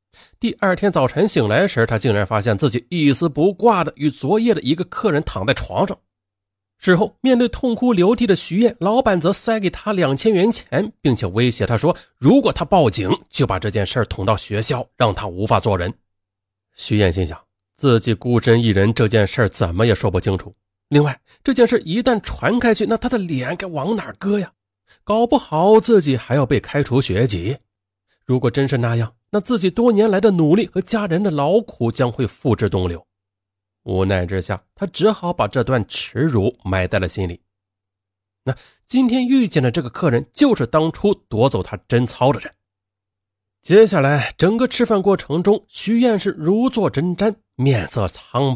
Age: 30-49